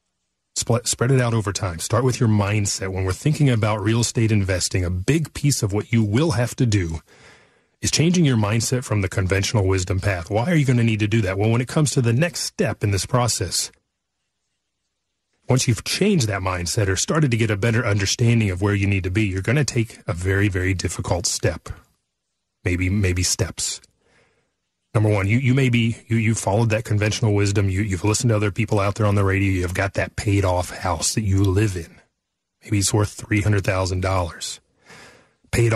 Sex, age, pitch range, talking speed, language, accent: male, 30-49, 100-120 Hz, 210 wpm, English, American